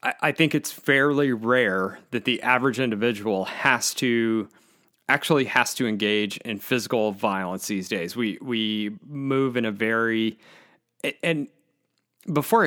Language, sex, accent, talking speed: English, male, American, 135 wpm